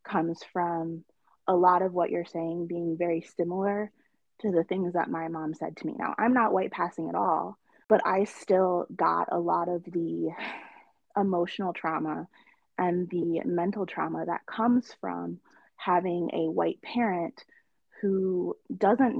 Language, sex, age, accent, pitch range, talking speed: English, female, 20-39, American, 170-205 Hz, 155 wpm